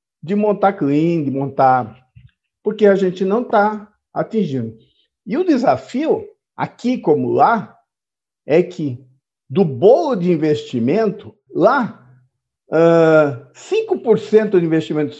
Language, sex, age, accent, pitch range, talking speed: Portuguese, male, 50-69, Brazilian, 150-220 Hz, 105 wpm